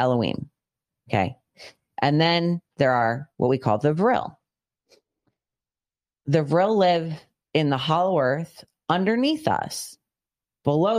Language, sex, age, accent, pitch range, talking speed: English, female, 30-49, American, 130-165 Hz, 115 wpm